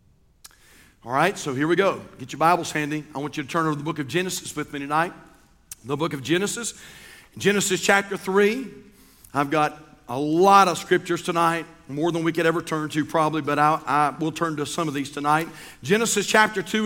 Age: 50-69